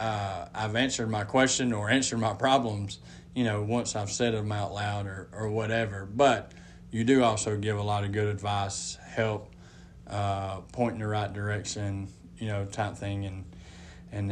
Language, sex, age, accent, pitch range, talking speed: English, male, 20-39, American, 100-115 Hz, 180 wpm